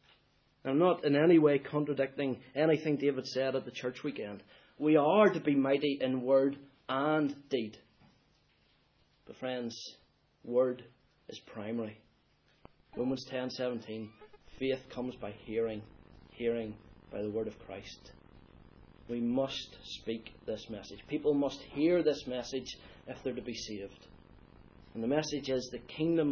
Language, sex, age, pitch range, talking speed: English, male, 30-49, 125-160 Hz, 140 wpm